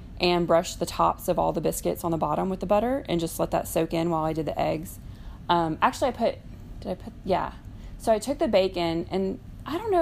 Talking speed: 250 wpm